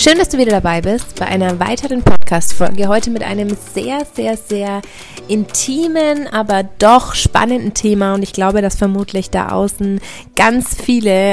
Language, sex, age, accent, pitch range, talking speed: German, female, 20-39, German, 195-225 Hz, 160 wpm